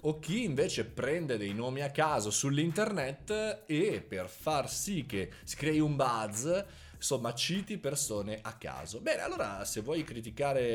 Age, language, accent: 20-39, Italian, native